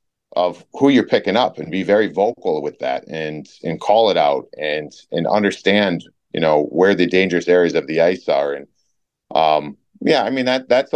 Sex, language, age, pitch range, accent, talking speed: male, English, 30-49, 85-105 Hz, American, 195 wpm